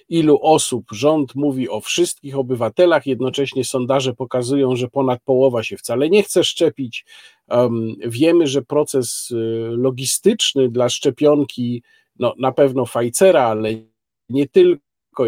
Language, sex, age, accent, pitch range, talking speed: Polish, male, 40-59, native, 130-185 Hz, 125 wpm